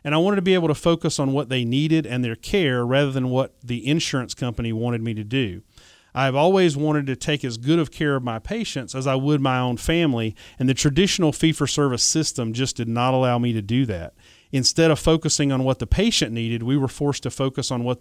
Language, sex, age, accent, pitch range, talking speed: English, male, 40-59, American, 120-150 Hz, 235 wpm